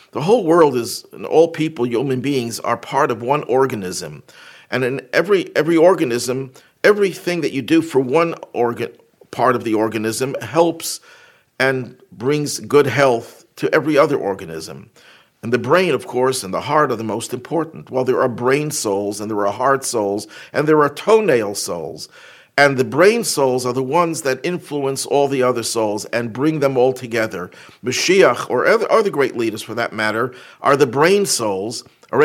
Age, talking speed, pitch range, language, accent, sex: 50-69, 180 wpm, 120-155 Hz, English, American, male